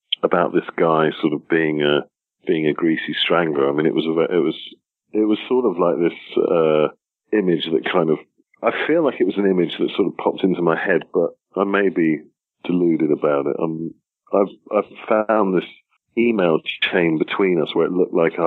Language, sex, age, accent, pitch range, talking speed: English, male, 40-59, British, 80-105 Hz, 200 wpm